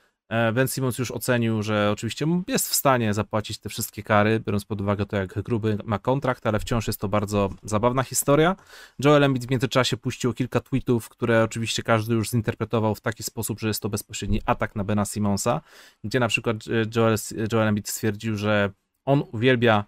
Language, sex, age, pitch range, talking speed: Polish, male, 30-49, 110-130 Hz, 185 wpm